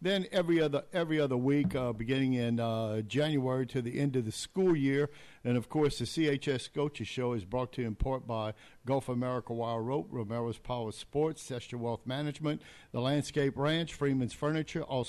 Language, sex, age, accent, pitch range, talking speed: English, male, 50-69, American, 125-145 Hz, 185 wpm